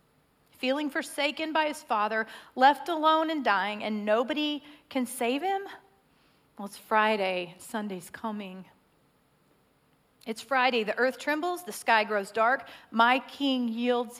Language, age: English, 40-59